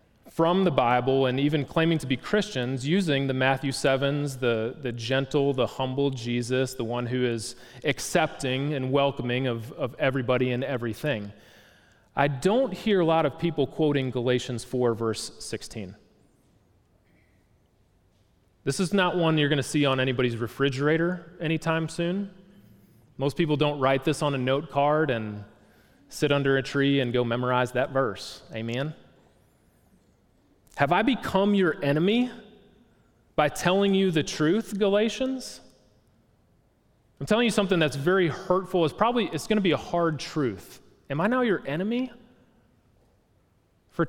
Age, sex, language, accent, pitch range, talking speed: 30-49, male, English, American, 115-160 Hz, 150 wpm